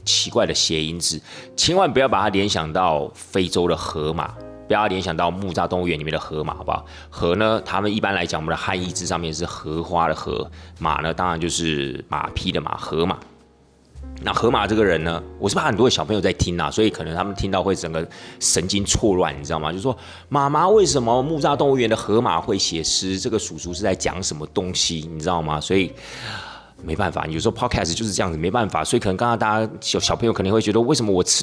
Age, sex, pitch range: 30-49, male, 80-105 Hz